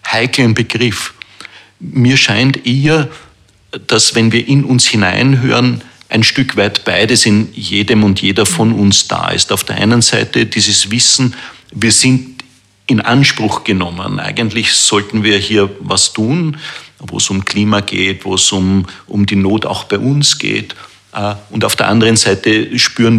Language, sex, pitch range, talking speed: German, male, 100-120 Hz, 160 wpm